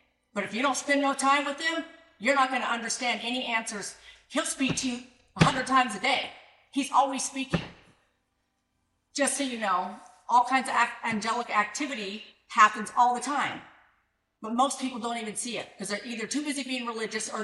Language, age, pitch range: English, 50-69, 205-260 Hz